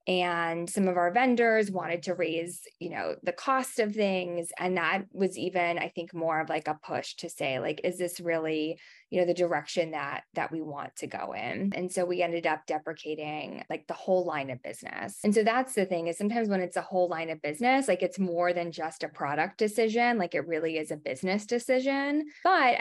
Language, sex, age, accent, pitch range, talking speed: English, female, 20-39, American, 170-210 Hz, 220 wpm